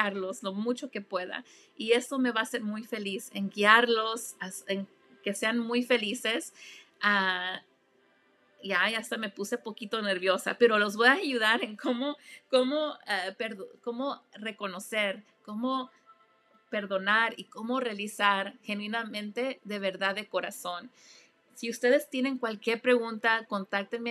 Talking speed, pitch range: 140 wpm, 195-235 Hz